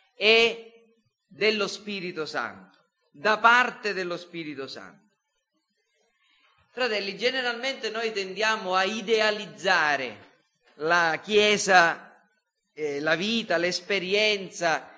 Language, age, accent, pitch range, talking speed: Italian, 40-59, native, 185-235 Hz, 85 wpm